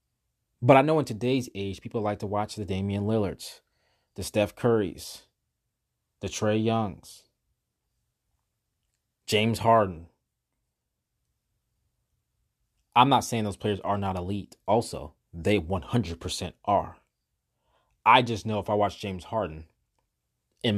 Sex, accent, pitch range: male, American, 90-115 Hz